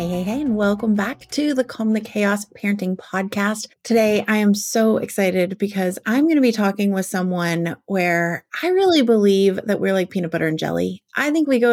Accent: American